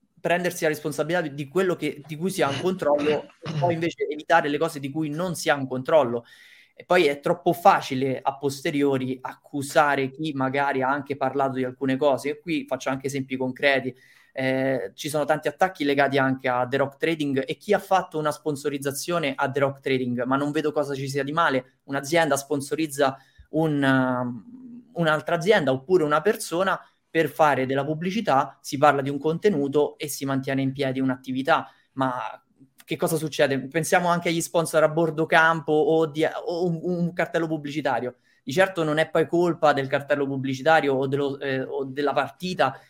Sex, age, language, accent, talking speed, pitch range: male, 20-39, Italian, native, 185 wpm, 135-170 Hz